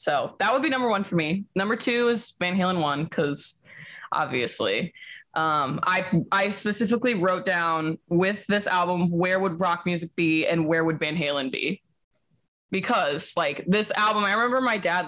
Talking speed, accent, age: 175 wpm, American, 20-39